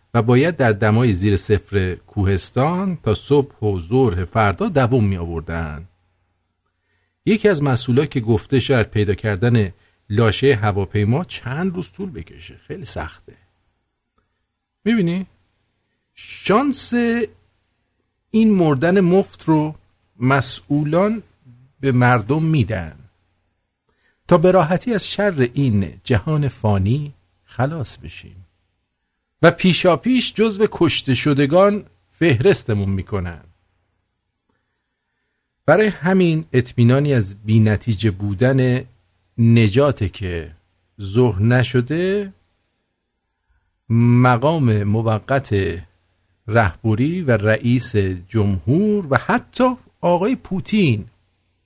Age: 50-69